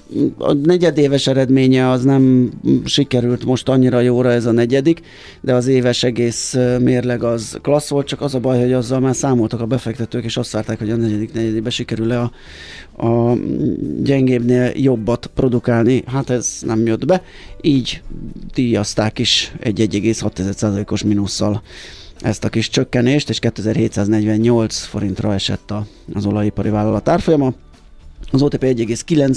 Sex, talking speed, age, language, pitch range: male, 135 wpm, 30-49, Hungarian, 110-130 Hz